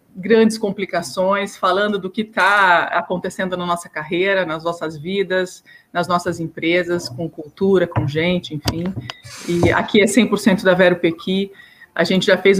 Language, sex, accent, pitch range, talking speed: Portuguese, female, Brazilian, 180-220 Hz, 155 wpm